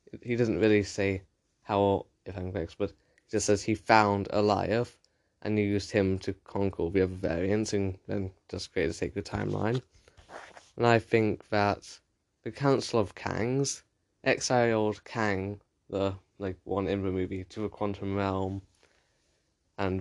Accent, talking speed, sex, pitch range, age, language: British, 155 wpm, male, 95-105 Hz, 10-29, English